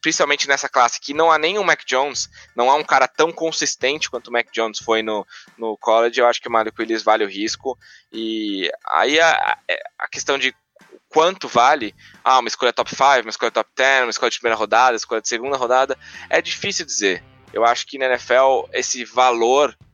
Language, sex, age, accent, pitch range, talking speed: English, male, 20-39, Brazilian, 110-155 Hz, 210 wpm